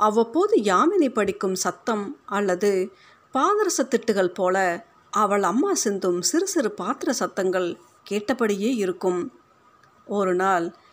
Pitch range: 185-250 Hz